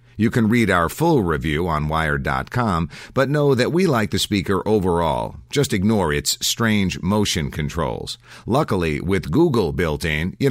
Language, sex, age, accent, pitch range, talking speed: English, male, 50-69, American, 85-120 Hz, 160 wpm